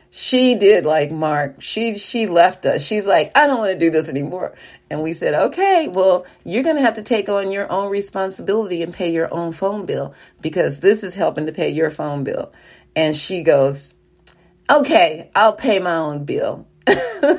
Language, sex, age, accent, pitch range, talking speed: English, female, 40-59, American, 160-215 Hz, 195 wpm